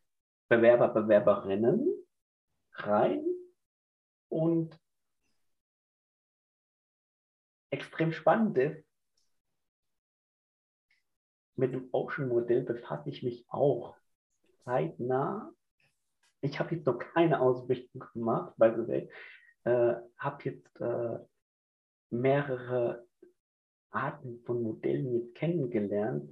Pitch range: 115-150 Hz